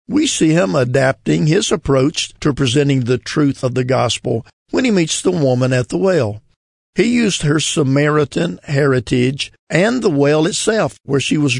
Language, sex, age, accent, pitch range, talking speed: English, male, 50-69, American, 125-155 Hz, 170 wpm